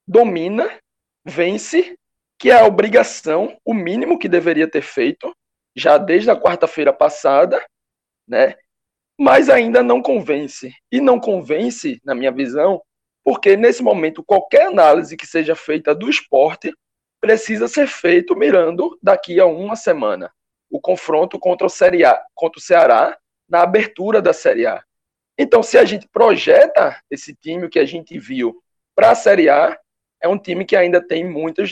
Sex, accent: male, Brazilian